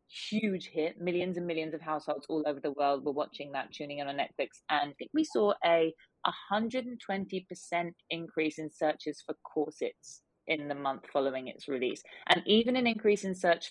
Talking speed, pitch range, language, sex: 185 wpm, 150-185 Hz, English, female